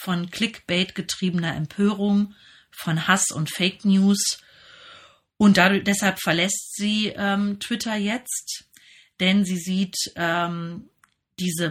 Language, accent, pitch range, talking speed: German, German, 170-200 Hz, 100 wpm